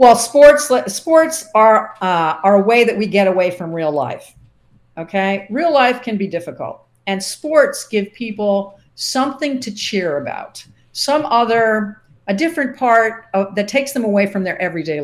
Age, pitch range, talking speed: 50-69, 170-235 Hz, 170 wpm